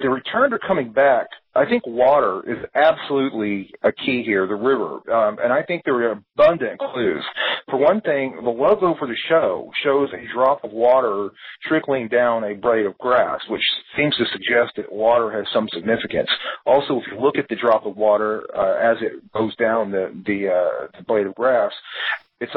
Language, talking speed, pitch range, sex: English, 195 wpm, 105-130 Hz, male